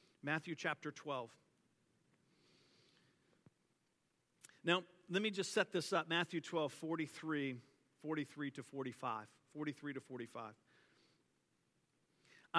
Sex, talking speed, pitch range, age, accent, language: male, 90 wpm, 145-185 Hz, 50-69, American, English